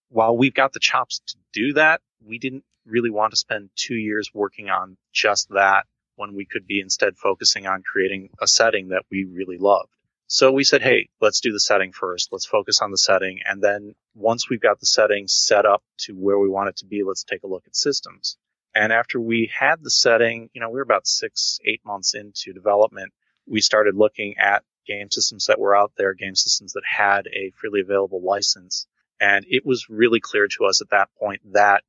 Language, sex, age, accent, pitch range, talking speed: English, male, 30-49, American, 95-110 Hz, 215 wpm